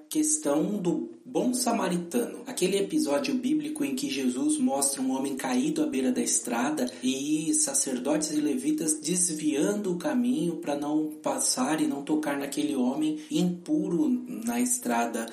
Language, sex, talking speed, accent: Portuguese, male, 140 wpm, Brazilian